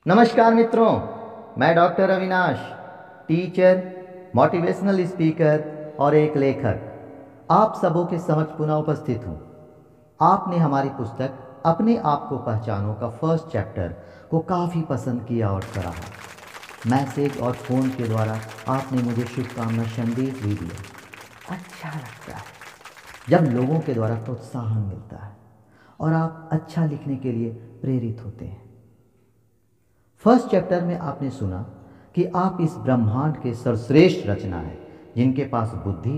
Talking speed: 135 wpm